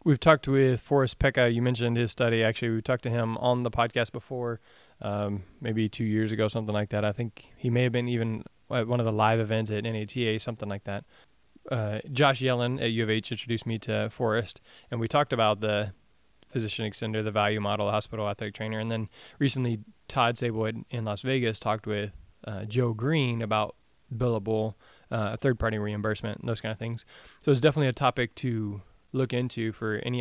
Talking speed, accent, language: 205 wpm, American, English